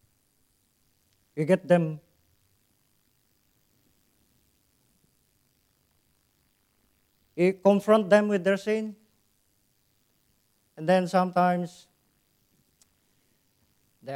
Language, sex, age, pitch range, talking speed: English, male, 50-69, 135-175 Hz, 55 wpm